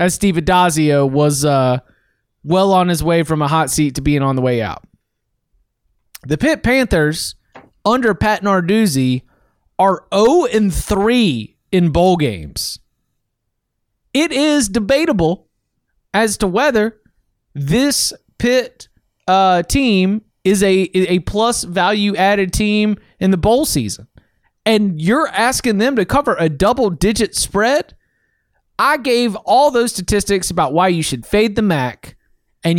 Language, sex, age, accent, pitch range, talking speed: English, male, 30-49, American, 145-220 Hz, 130 wpm